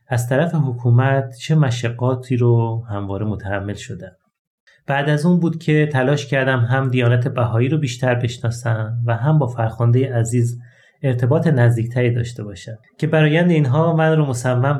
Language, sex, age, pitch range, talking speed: Persian, male, 30-49, 120-140 Hz, 150 wpm